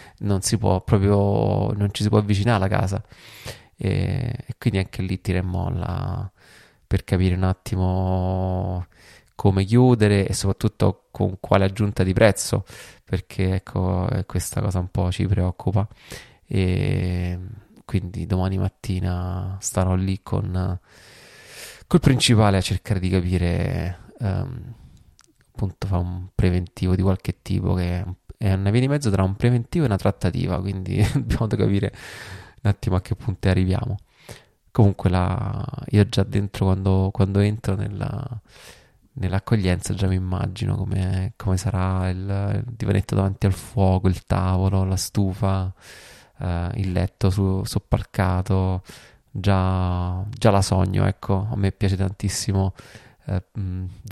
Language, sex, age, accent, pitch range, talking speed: Italian, male, 20-39, native, 95-105 Hz, 135 wpm